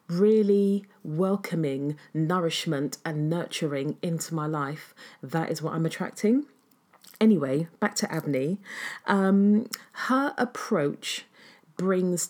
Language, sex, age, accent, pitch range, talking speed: English, female, 40-59, British, 160-210 Hz, 105 wpm